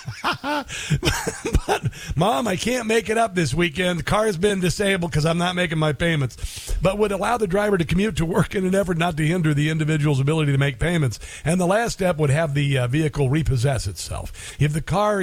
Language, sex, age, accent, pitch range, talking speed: English, male, 50-69, American, 130-175 Hz, 215 wpm